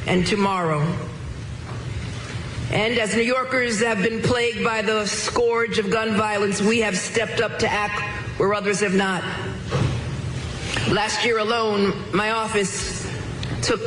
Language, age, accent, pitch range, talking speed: English, 50-69, American, 170-220 Hz, 135 wpm